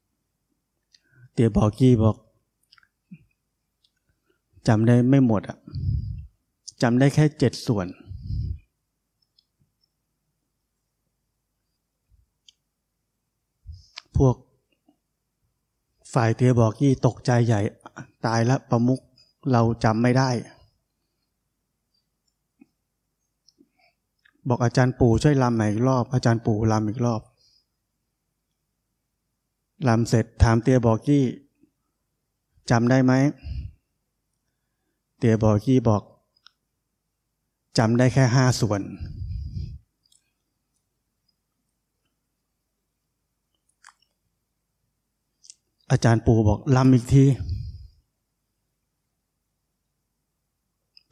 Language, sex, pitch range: Thai, male, 110-130 Hz